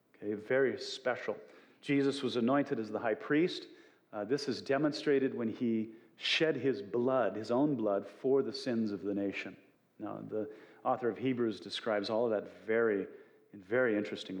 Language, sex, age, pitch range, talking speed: English, male, 40-59, 105-140 Hz, 170 wpm